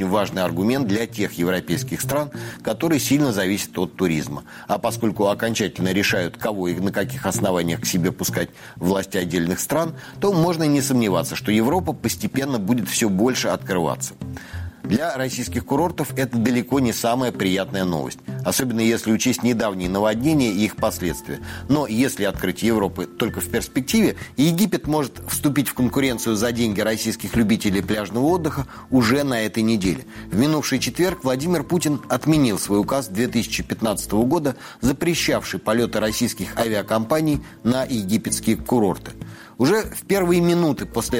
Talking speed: 145 wpm